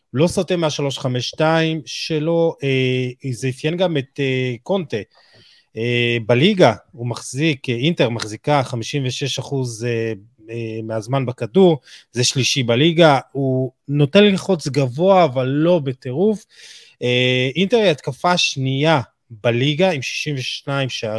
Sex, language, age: male, Hebrew, 30-49